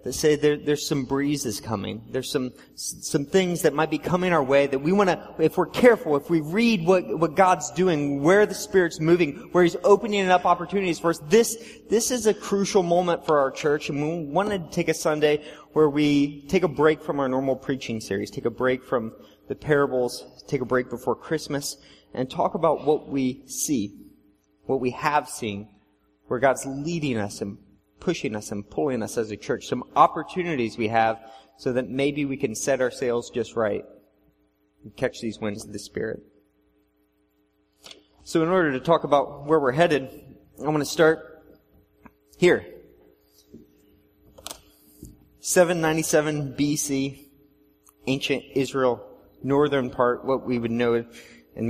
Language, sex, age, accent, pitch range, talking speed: English, male, 30-49, American, 120-160 Hz, 170 wpm